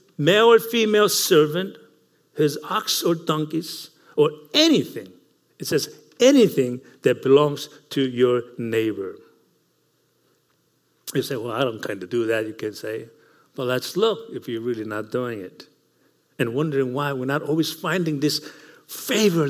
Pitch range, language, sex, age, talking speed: 125-180 Hz, English, male, 60-79, 150 wpm